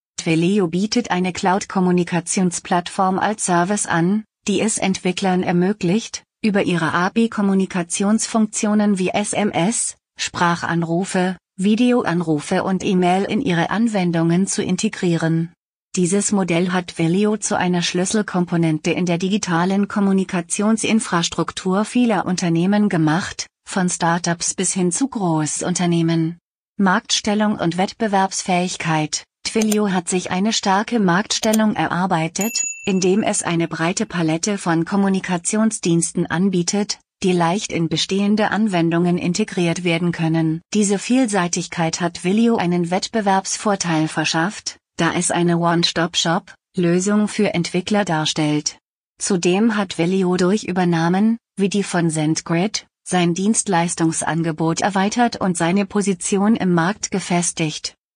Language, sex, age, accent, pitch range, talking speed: German, female, 30-49, German, 170-205 Hz, 105 wpm